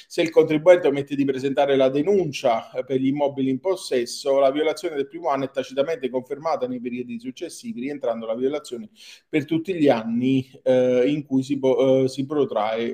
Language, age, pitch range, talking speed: Italian, 40-59, 135-195 Hz, 175 wpm